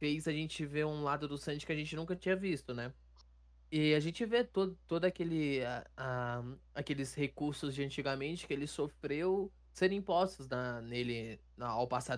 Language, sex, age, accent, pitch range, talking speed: Portuguese, male, 20-39, Brazilian, 130-155 Hz, 180 wpm